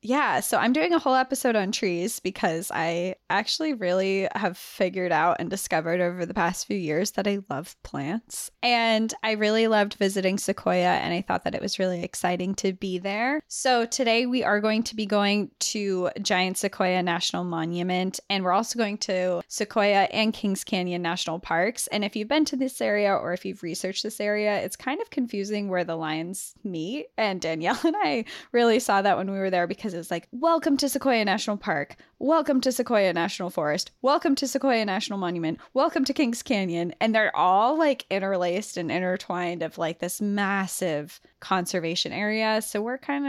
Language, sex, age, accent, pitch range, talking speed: English, female, 20-39, American, 180-230 Hz, 190 wpm